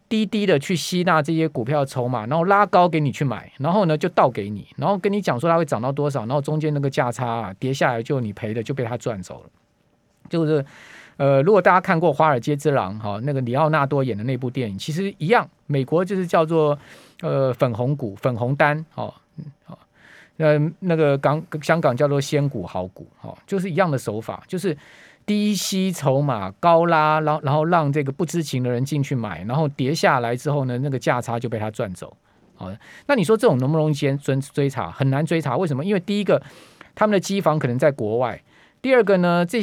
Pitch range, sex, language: 130-170 Hz, male, Chinese